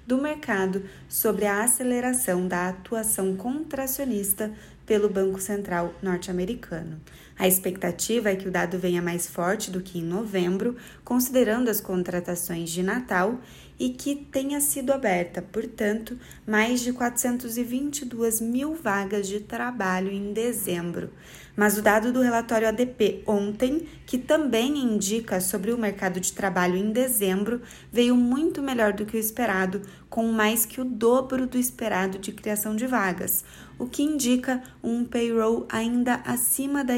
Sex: female